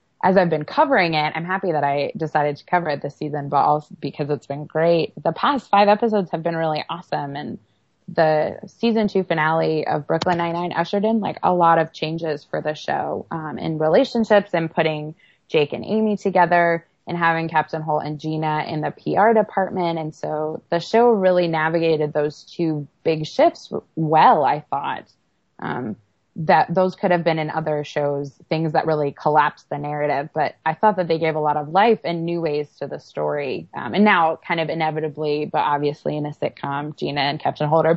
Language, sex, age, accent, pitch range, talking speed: English, female, 20-39, American, 150-180 Hz, 200 wpm